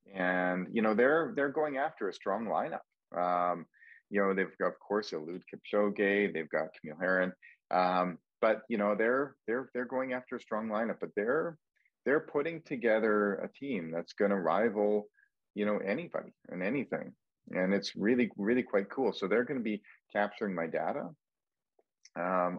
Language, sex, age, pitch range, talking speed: English, male, 30-49, 90-110 Hz, 175 wpm